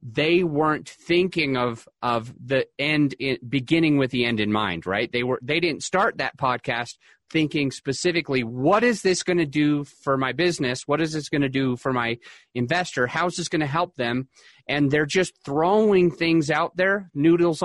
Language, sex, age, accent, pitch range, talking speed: English, male, 30-49, American, 125-160 Hz, 185 wpm